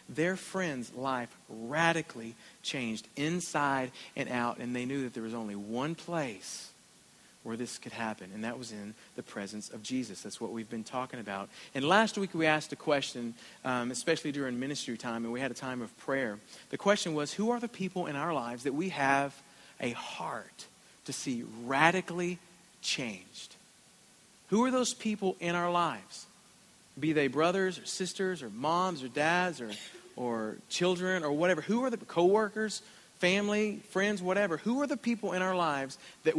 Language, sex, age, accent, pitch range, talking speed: English, male, 40-59, American, 130-190 Hz, 180 wpm